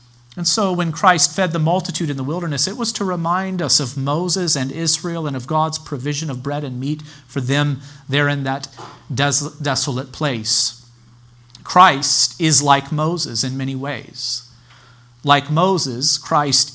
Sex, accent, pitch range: male, American, 125-170 Hz